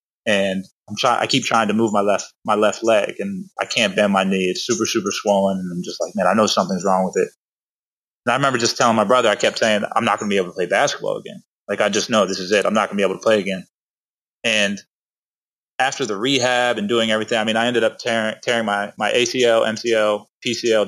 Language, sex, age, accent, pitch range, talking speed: English, male, 20-39, American, 100-115 Hz, 255 wpm